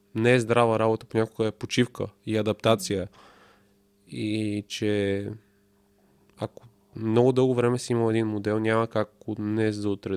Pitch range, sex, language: 100-120 Hz, male, Bulgarian